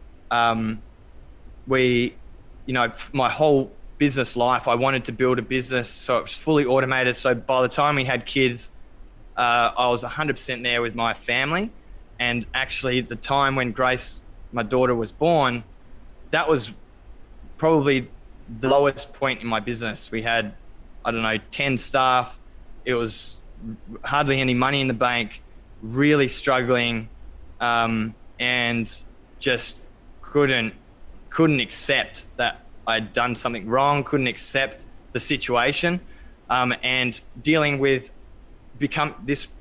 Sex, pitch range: male, 115-135 Hz